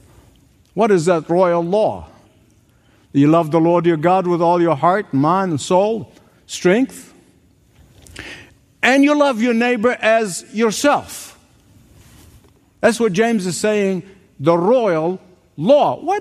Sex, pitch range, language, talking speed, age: male, 150-235 Hz, English, 130 wpm, 50-69